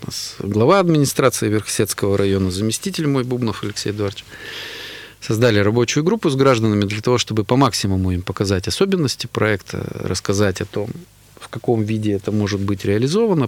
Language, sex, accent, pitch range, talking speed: Russian, male, native, 95-125 Hz, 145 wpm